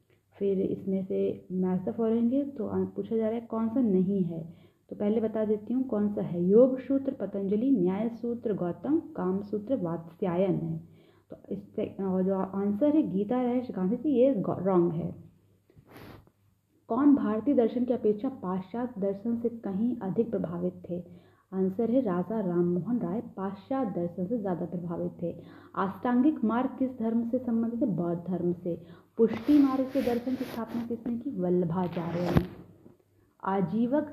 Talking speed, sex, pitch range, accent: 155 wpm, female, 180-245 Hz, native